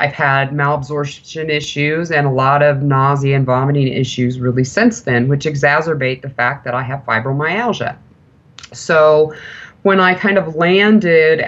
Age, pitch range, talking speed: 30-49, 140-165 Hz, 150 wpm